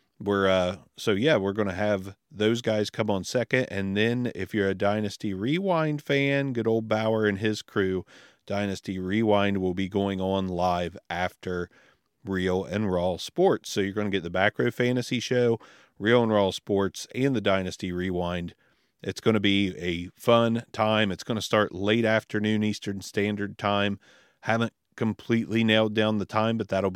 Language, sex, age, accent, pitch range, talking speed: English, male, 40-59, American, 95-115 Hz, 170 wpm